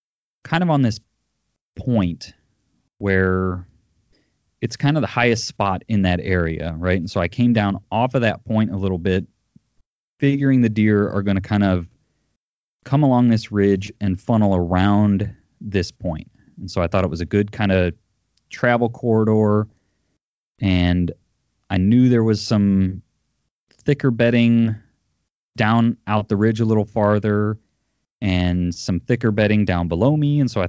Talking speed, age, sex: 160 wpm, 30-49, male